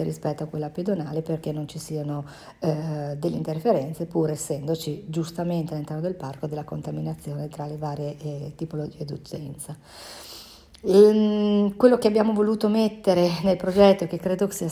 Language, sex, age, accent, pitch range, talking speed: Italian, female, 40-59, native, 155-185 Hz, 150 wpm